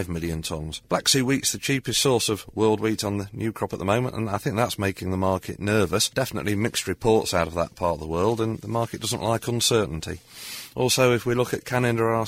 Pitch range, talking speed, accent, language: 105-125 Hz, 240 wpm, British, English